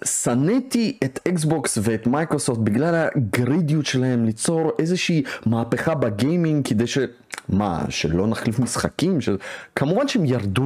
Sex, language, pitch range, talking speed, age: male, Hebrew, 110-185 Hz, 115 wpm, 30-49